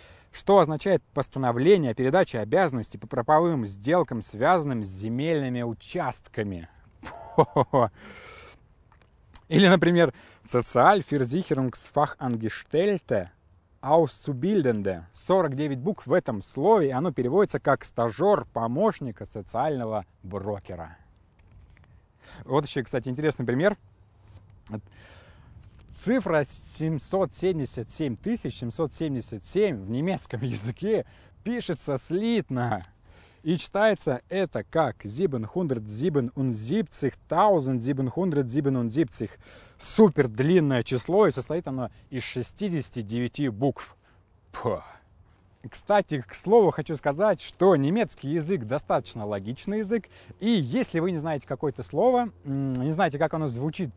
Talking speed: 90 wpm